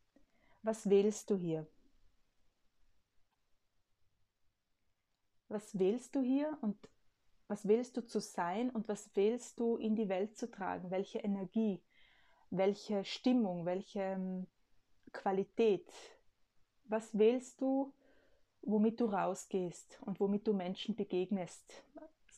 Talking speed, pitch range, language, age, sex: 105 wpm, 185-225 Hz, German, 20-39, female